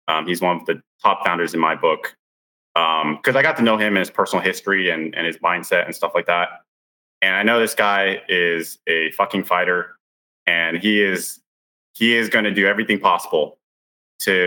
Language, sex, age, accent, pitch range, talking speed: English, male, 20-39, American, 95-120 Hz, 205 wpm